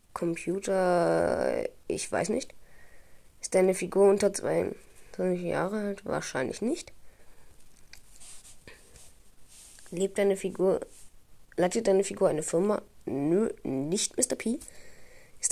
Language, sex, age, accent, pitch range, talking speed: German, female, 20-39, German, 170-210 Hz, 100 wpm